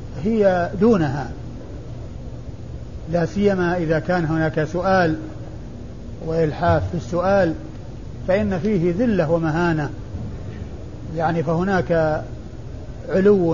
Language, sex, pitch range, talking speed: Arabic, male, 155-195 Hz, 80 wpm